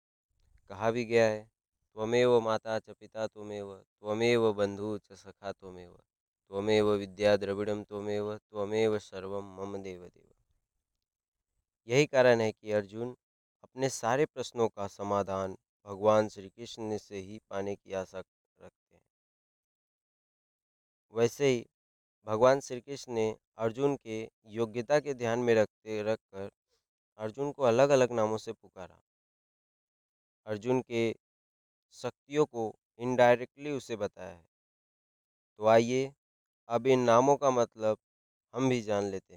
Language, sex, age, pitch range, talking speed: Hindi, male, 20-39, 100-120 Hz, 135 wpm